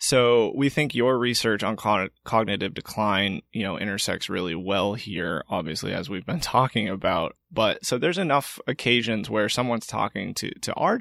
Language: English